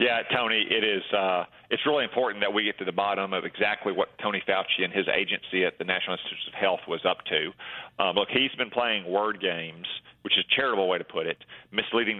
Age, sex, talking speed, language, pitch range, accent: 40-59, male, 225 wpm, English, 90-110 Hz, American